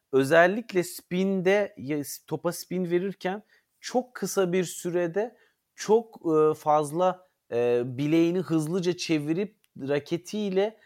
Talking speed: 85 wpm